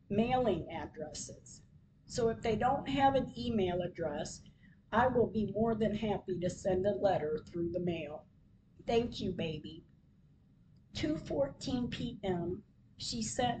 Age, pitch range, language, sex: 50-69, 195-230 Hz, English, female